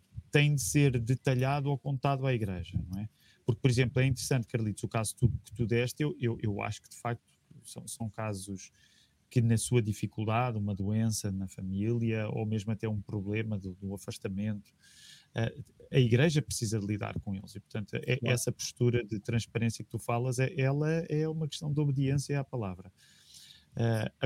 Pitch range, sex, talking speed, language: 105-125 Hz, male, 190 wpm, Portuguese